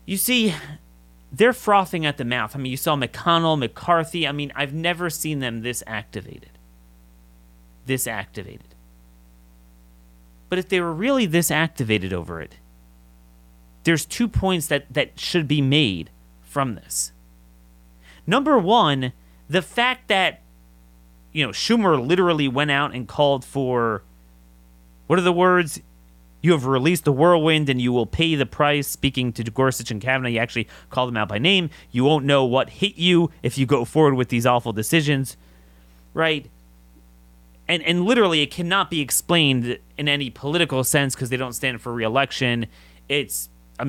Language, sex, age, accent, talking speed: English, male, 30-49, American, 160 wpm